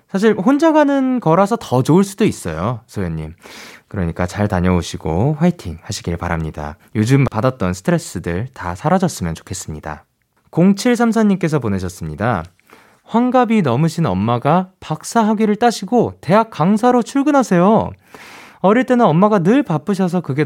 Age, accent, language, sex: 20-39, native, Korean, male